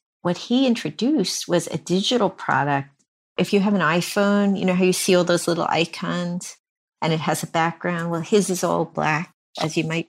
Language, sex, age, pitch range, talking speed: English, female, 50-69, 160-195 Hz, 200 wpm